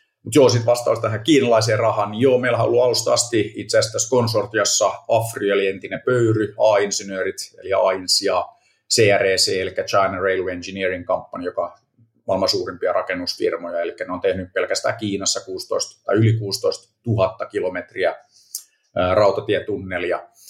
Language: Finnish